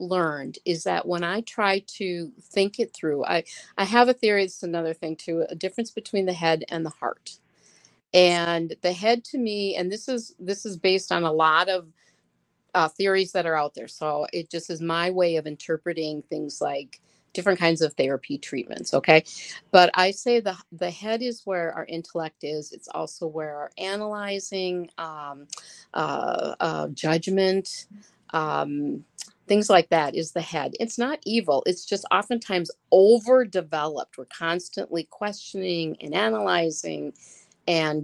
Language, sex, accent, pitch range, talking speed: English, female, American, 160-200 Hz, 165 wpm